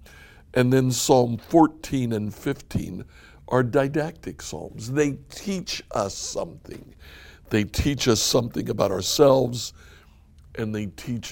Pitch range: 75-125 Hz